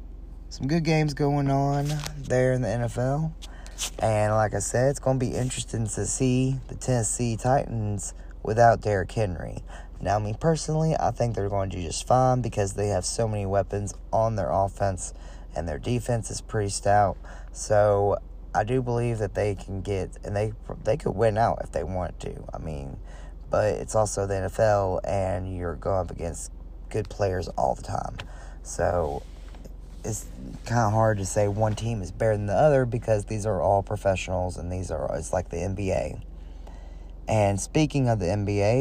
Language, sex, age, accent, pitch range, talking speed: English, male, 20-39, American, 95-125 Hz, 180 wpm